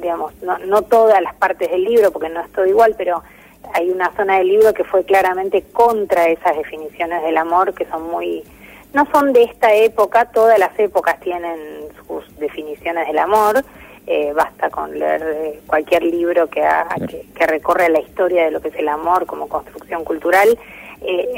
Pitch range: 170-210 Hz